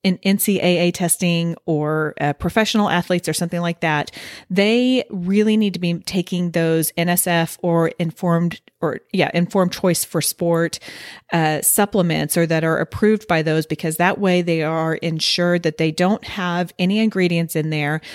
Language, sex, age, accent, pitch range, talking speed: English, female, 40-59, American, 160-190 Hz, 160 wpm